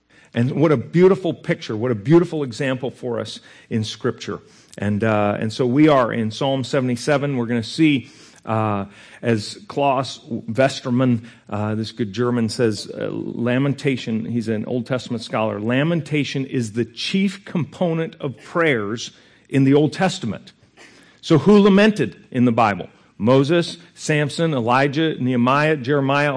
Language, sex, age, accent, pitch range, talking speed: English, male, 50-69, American, 115-155 Hz, 145 wpm